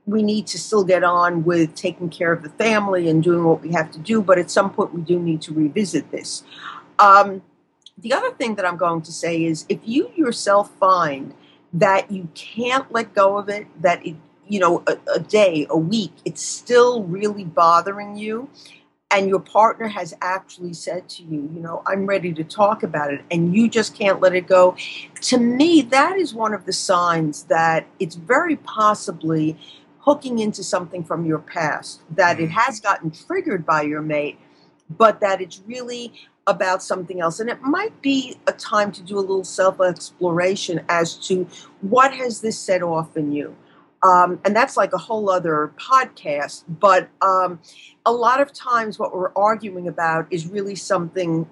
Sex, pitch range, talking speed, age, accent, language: female, 165-215 Hz, 190 wpm, 50-69, American, English